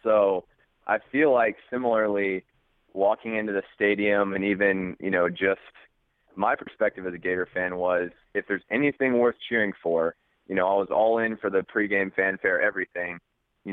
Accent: American